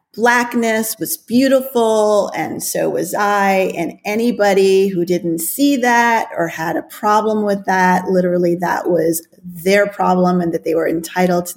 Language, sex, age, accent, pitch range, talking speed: English, female, 30-49, American, 180-220 Hz, 155 wpm